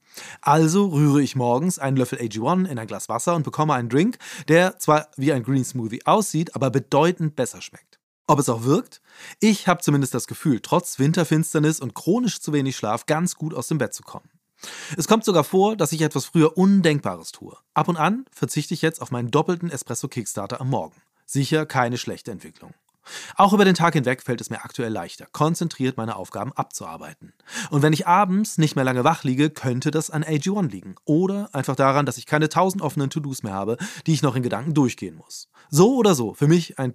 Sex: male